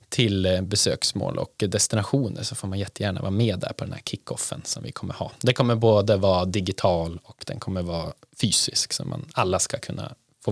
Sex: male